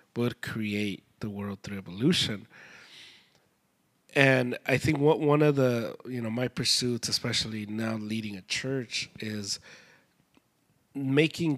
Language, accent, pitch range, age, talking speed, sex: English, American, 110-140 Hz, 30-49, 125 wpm, male